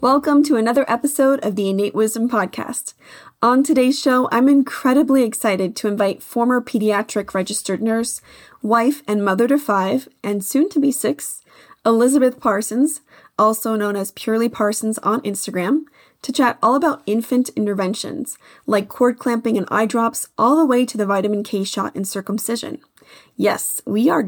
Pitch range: 205-255 Hz